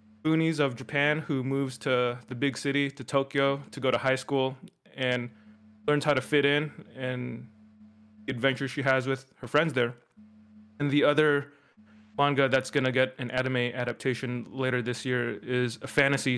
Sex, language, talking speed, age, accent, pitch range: male, English, 175 wpm, 20-39, American, 120-145 Hz